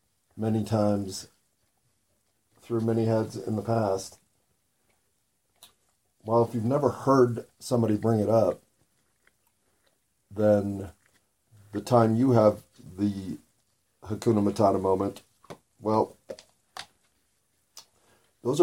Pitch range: 100-120 Hz